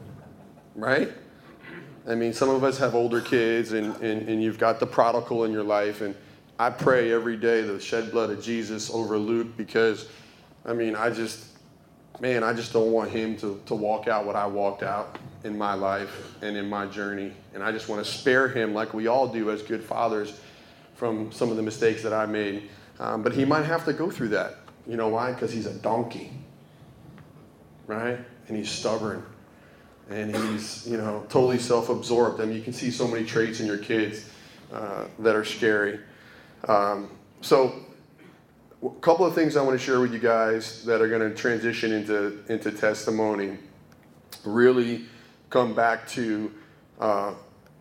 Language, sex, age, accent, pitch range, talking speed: English, male, 30-49, American, 105-115 Hz, 180 wpm